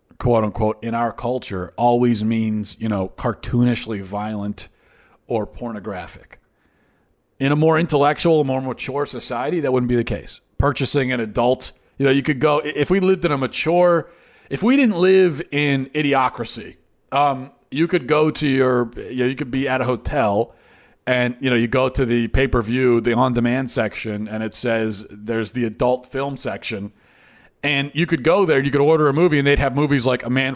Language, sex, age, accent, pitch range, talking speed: English, male, 40-59, American, 110-140 Hz, 185 wpm